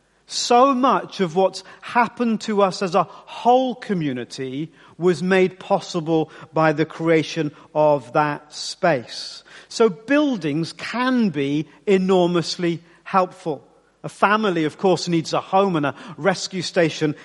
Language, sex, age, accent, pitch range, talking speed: English, male, 50-69, British, 150-190 Hz, 130 wpm